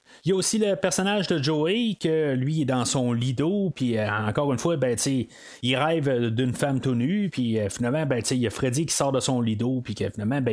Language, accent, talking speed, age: French, Canadian, 245 wpm, 30-49